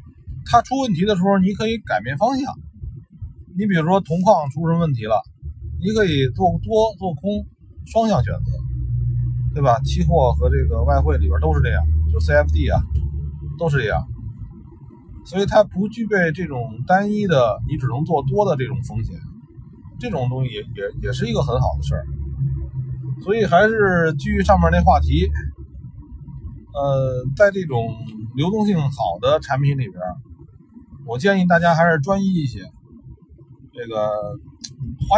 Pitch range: 110-170 Hz